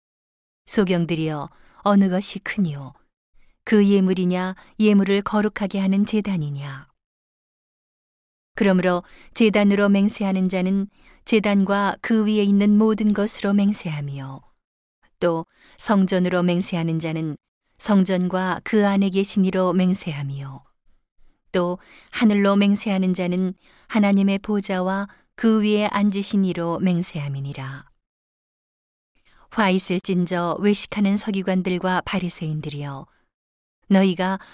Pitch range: 170-200 Hz